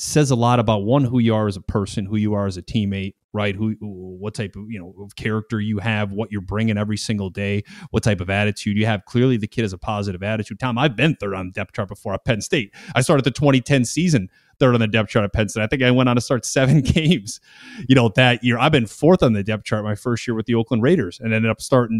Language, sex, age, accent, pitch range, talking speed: English, male, 30-49, American, 105-135 Hz, 285 wpm